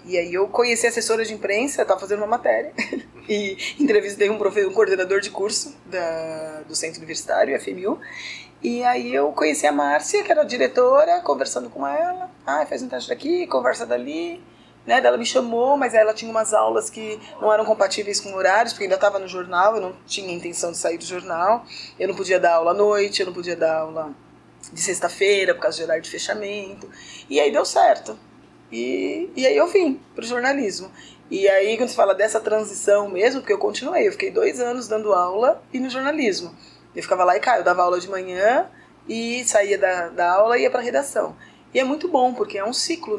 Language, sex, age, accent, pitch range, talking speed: Portuguese, female, 20-39, Brazilian, 180-245 Hz, 210 wpm